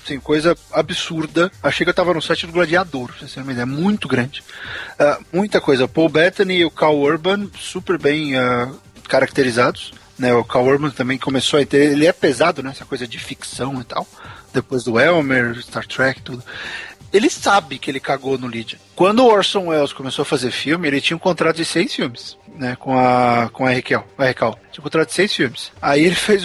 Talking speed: 205 wpm